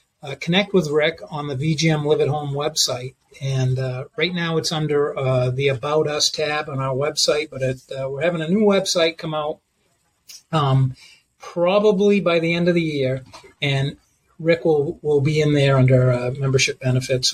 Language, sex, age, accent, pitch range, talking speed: English, male, 40-59, American, 140-180 Hz, 185 wpm